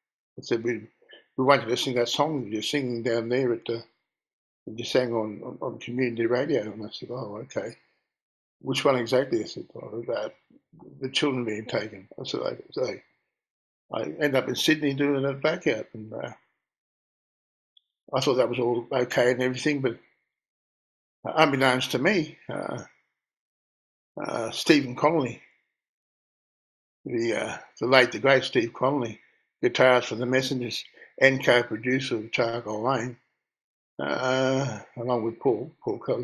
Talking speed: 160 wpm